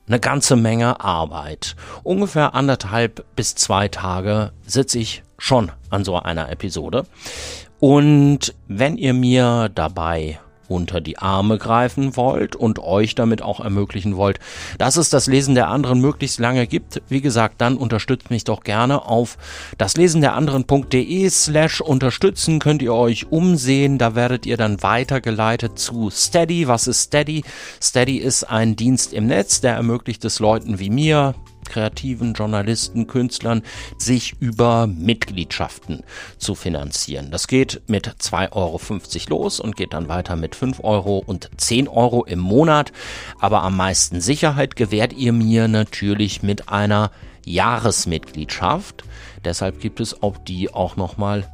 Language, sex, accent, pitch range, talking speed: German, male, German, 95-130 Hz, 140 wpm